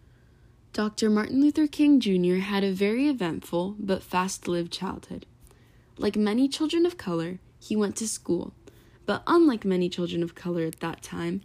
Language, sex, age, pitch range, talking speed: English, female, 10-29, 175-210 Hz, 155 wpm